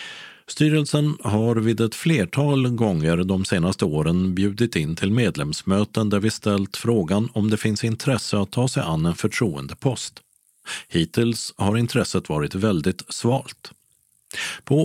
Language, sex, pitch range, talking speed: Swedish, male, 95-125 Hz, 135 wpm